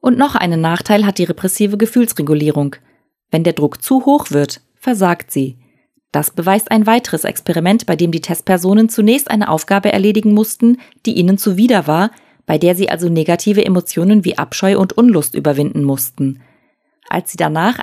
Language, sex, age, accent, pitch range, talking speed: German, female, 30-49, German, 165-230 Hz, 165 wpm